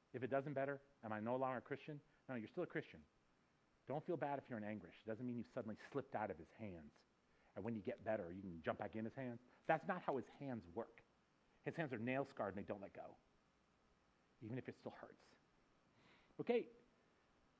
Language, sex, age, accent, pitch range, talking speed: English, male, 40-59, American, 130-210 Hz, 220 wpm